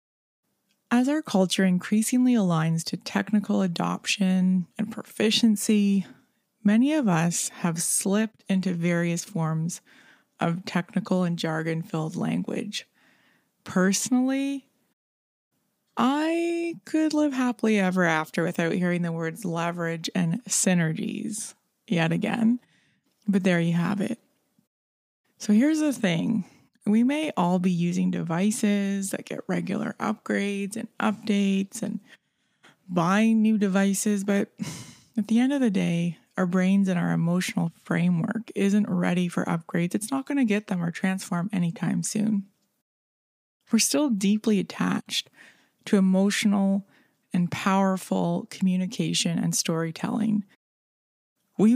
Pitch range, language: 180-225 Hz, English